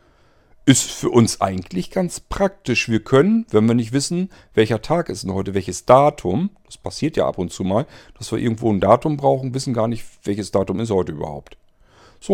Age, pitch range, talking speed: 50-69, 105-150 Hz, 195 wpm